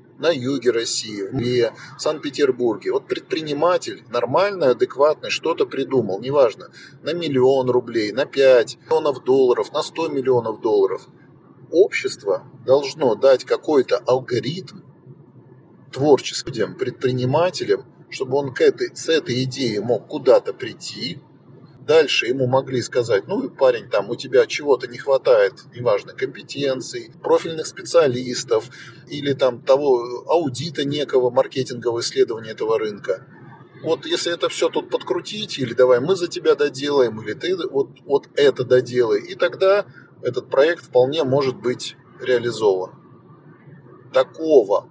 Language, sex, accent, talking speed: Russian, male, native, 125 wpm